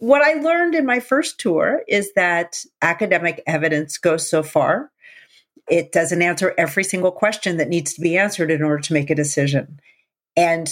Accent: American